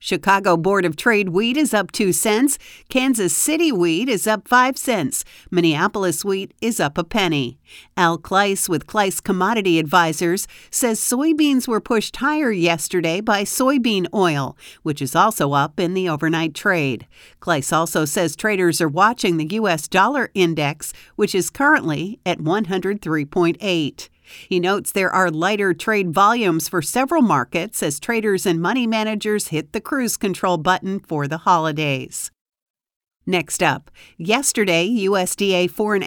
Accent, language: American, English